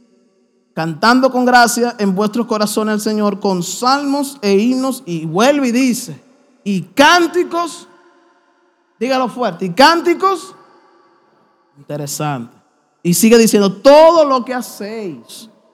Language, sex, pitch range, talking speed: Spanish, male, 165-255 Hz, 115 wpm